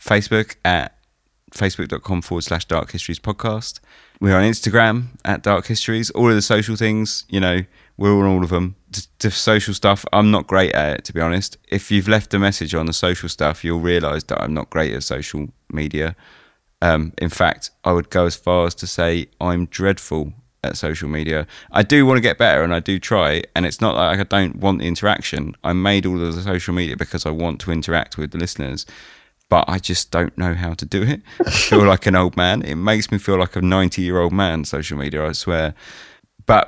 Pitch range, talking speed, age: 80-100 Hz, 220 wpm, 30-49